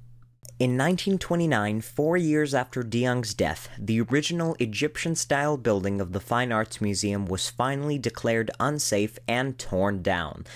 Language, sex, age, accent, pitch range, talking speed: English, male, 30-49, American, 105-135 Hz, 135 wpm